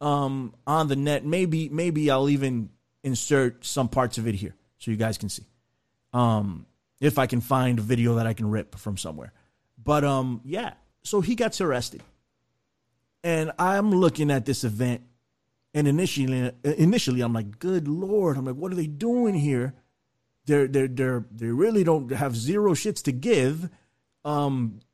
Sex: male